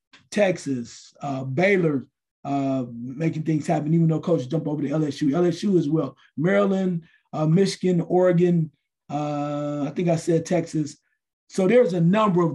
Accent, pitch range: American, 150-180 Hz